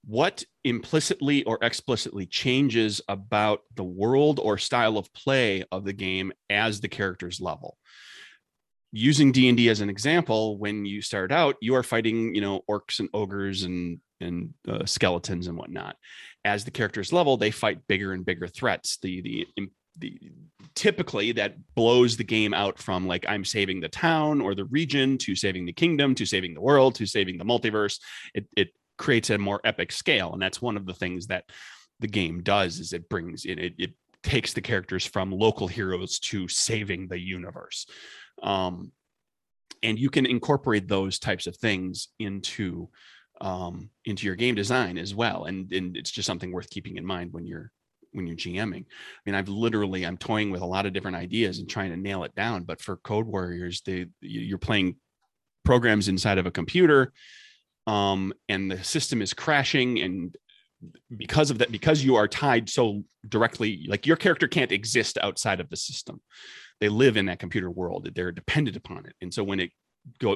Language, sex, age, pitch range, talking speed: English, male, 30-49, 95-115 Hz, 185 wpm